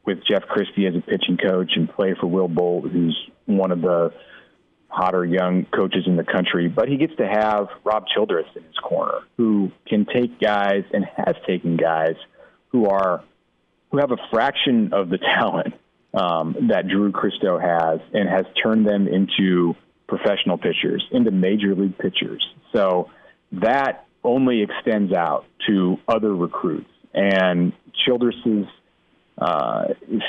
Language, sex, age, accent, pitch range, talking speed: English, male, 40-59, American, 90-110 Hz, 150 wpm